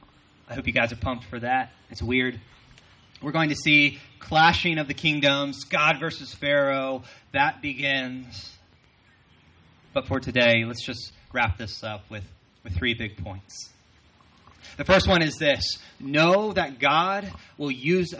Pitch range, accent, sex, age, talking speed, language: 110-150 Hz, American, male, 30-49, 150 wpm, English